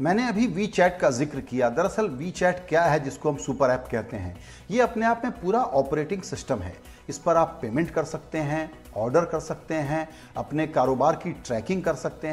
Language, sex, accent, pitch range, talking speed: Hindi, male, native, 140-185 Hz, 200 wpm